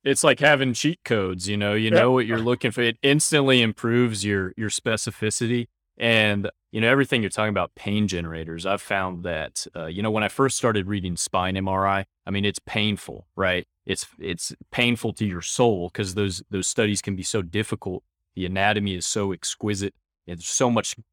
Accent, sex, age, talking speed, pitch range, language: American, male, 20-39, 195 wpm, 90-110 Hz, English